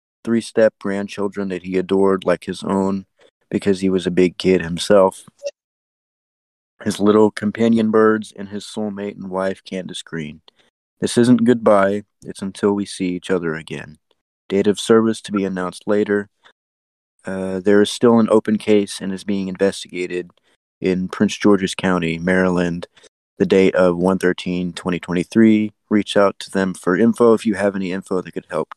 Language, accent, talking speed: English, American, 165 wpm